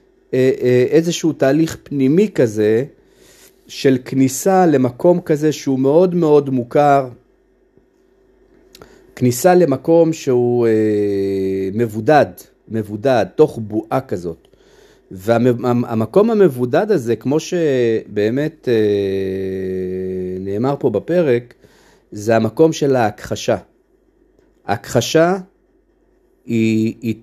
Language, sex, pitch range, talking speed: Hebrew, male, 115-180 Hz, 75 wpm